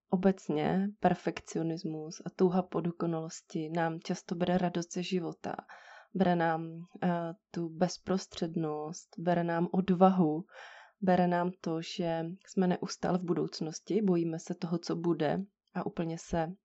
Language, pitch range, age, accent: Czech, 170-195 Hz, 20-39, native